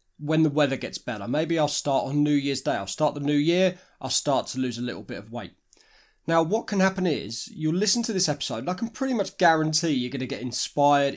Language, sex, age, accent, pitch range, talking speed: English, male, 20-39, British, 135-170 Hz, 245 wpm